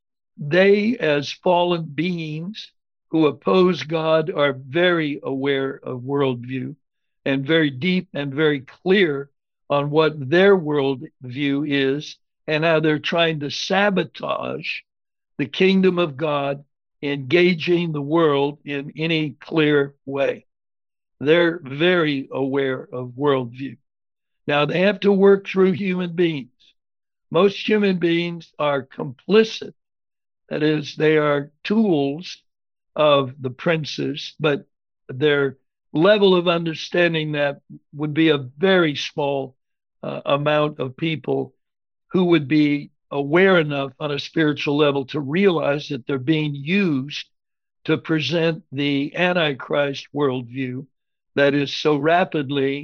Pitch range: 140-170 Hz